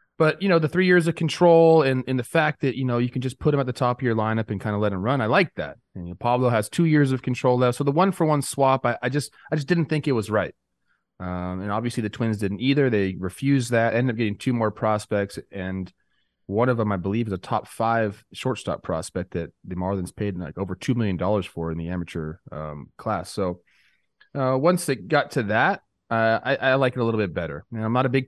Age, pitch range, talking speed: 30-49, 100-130 Hz, 260 wpm